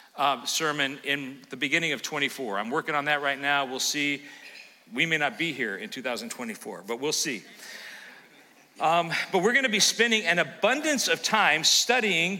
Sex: male